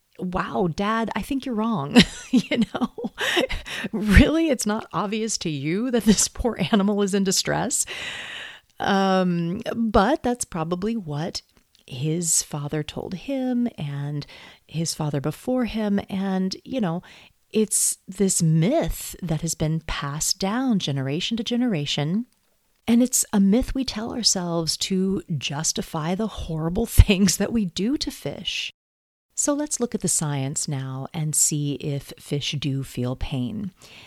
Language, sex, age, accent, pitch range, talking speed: English, female, 40-59, American, 155-215 Hz, 140 wpm